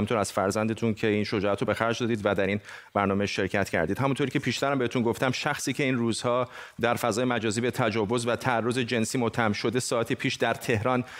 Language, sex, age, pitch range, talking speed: Persian, male, 30-49, 110-140 Hz, 210 wpm